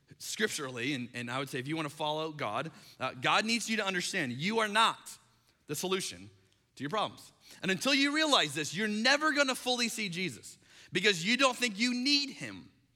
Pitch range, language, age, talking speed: 130-185 Hz, English, 30-49, 210 wpm